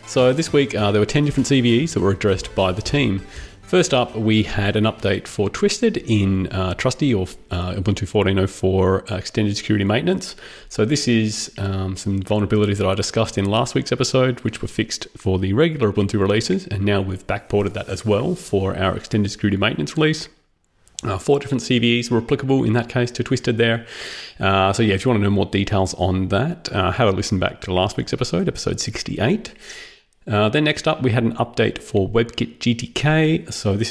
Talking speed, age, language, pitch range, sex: 205 wpm, 30-49, English, 95-120 Hz, male